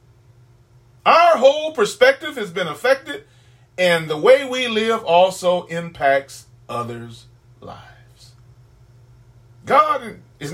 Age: 40-59